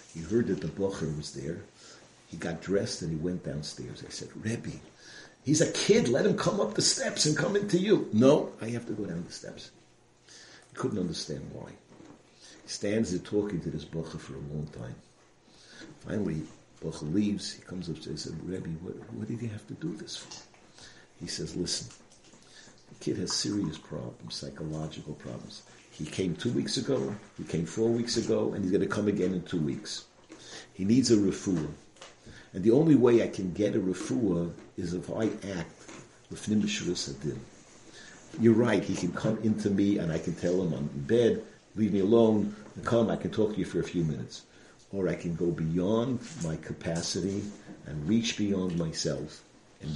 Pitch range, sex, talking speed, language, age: 80-110 Hz, male, 195 wpm, English, 50-69